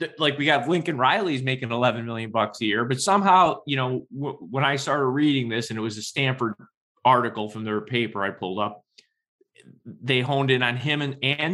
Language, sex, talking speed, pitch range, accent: English, male, 210 wpm, 115-150 Hz, American